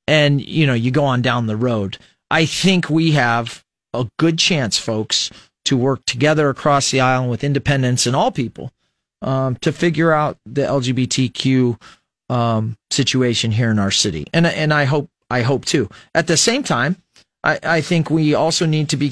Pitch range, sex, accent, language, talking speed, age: 120-150 Hz, male, American, English, 185 wpm, 40-59